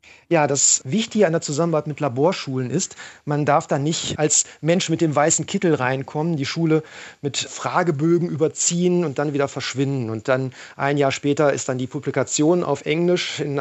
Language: German